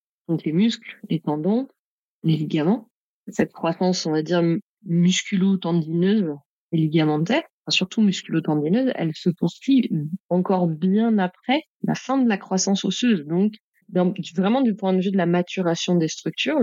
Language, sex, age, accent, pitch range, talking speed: French, female, 30-49, French, 170-205 Hz, 150 wpm